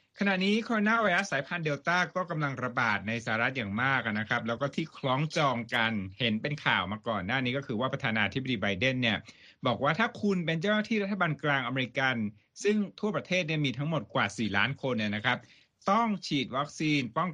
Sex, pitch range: male, 115-155 Hz